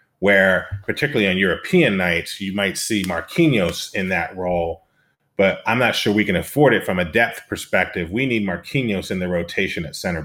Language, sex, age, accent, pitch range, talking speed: English, male, 30-49, American, 90-105 Hz, 185 wpm